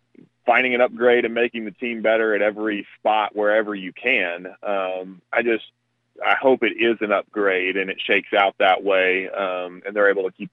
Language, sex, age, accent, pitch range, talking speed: English, male, 30-49, American, 95-105 Hz, 200 wpm